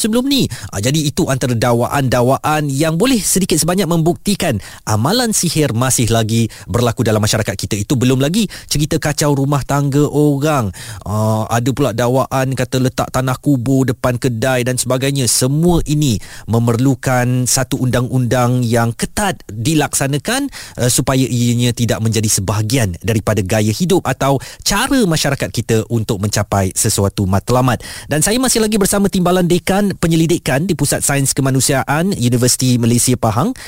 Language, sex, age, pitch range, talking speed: Malay, male, 20-39, 120-175 Hz, 145 wpm